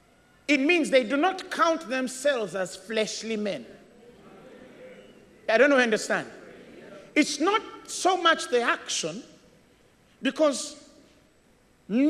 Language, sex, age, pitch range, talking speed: English, male, 50-69, 235-330 Hz, 105 wpm